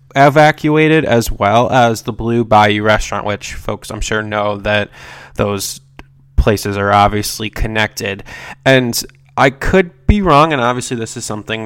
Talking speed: 150 wpm